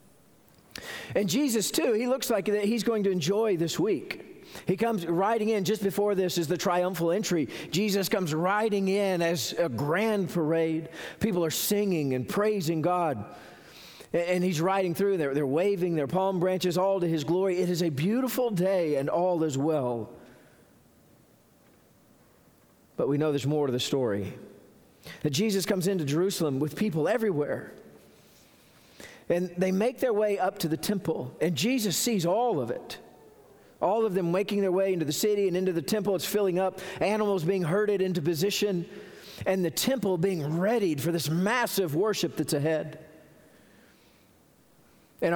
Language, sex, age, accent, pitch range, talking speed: English, male, 40-59, American, 150-195 Hz, 165 wpm